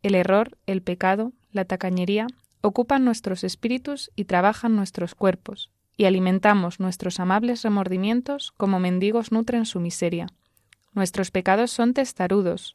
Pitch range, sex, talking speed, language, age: 185-225 Hz, female, 125 wpm, Spanish, 20-39